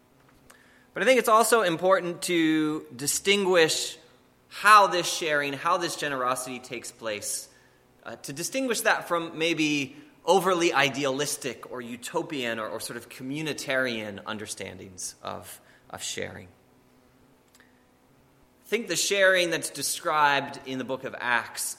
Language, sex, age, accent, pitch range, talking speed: English, male, 20-39, American, 120-170 Hz, 125 wpm